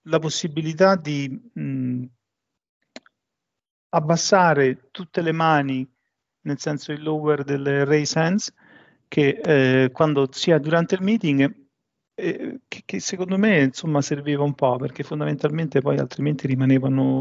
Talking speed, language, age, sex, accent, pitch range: 125 wpm, Italian, 40-59, male, native, 130-155 Hz